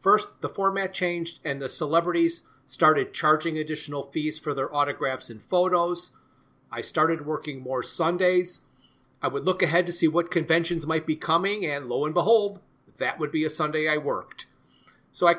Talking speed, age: 175 wpm, 40-59